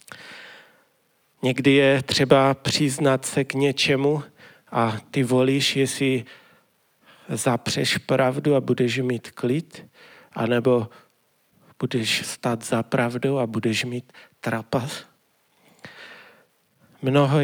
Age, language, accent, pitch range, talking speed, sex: 40-59, Czech, native, 125-140 Hz, 90 wpm, male